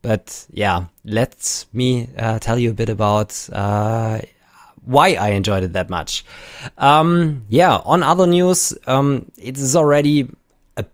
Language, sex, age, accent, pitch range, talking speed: English, male, 20-39, German, 110-140 Hz, 150 wpm